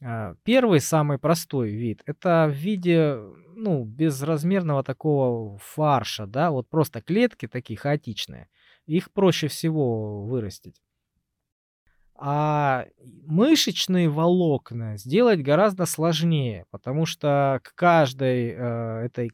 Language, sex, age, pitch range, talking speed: Russian, male, 20-39, 120-165 Hz, 100 wpm